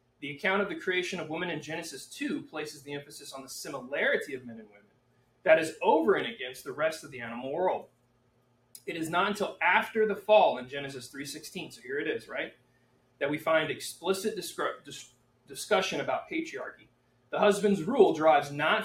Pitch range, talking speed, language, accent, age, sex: 125-190 Hz, 185 wpm, English, American, 30-49, male